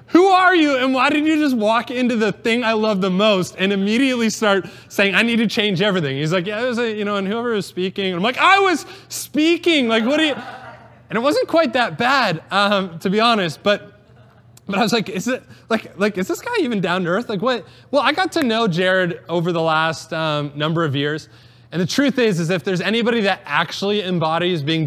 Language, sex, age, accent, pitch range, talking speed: English, male, 20-39, American, 160-220 Hz, 240 wpm